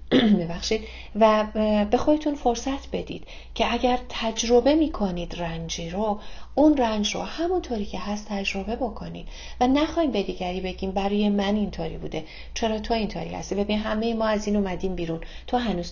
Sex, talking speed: female, 155 wpm